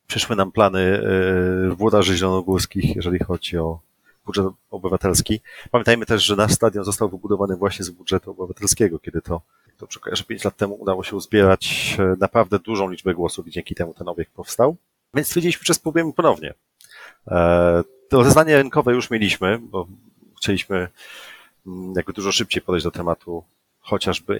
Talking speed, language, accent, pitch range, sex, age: 145 wpm, Polish, native, 90-115 Hz, male, 30-49